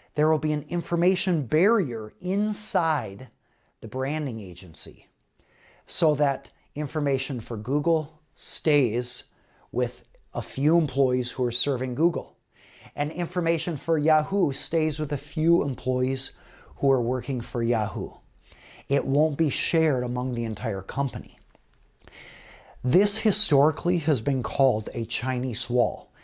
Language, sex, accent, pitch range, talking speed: English, male, American, 125-160 Hz, 125 wpm